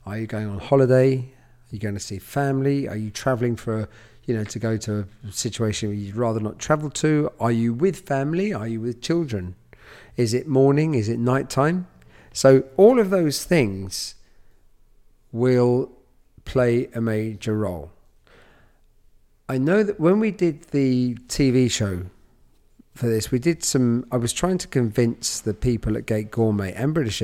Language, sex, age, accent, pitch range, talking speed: English, male, 40-59, British, 105-135 Hz, 175 wpm